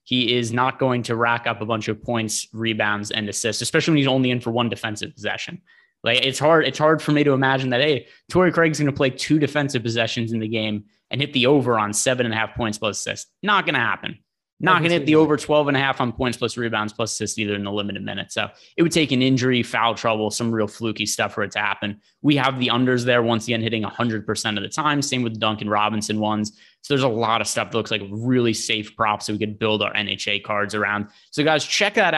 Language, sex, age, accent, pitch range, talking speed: English, male, 20-39, American, 110-140 Hz, 260 wpm